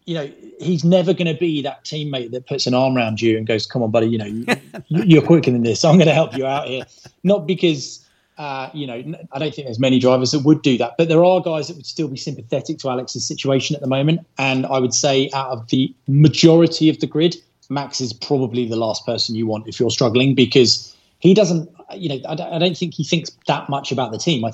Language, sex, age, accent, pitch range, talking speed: English, male, 30-49, British, 115-150 Hz, 245 wpm